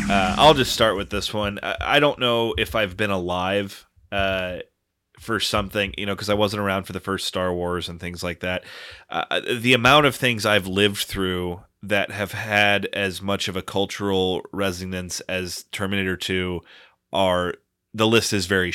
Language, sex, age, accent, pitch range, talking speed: English, male, 30-49, American, 90-105 Hz, 180 wpm